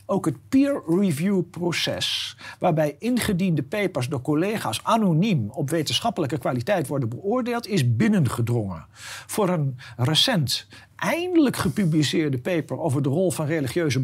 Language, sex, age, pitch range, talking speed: Dutch, male, 50-69, 125-190 Hz, 115 wpm